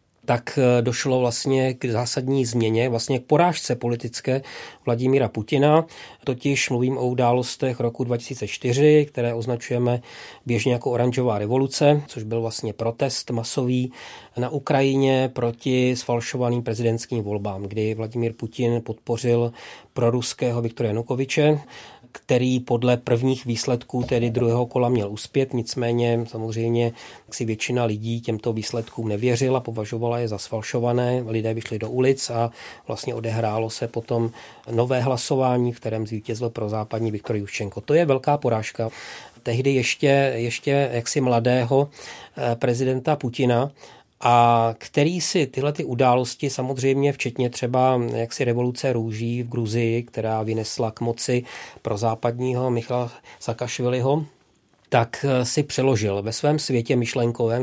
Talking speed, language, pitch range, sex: 125 wpm, Czech, 115-130 Hz, male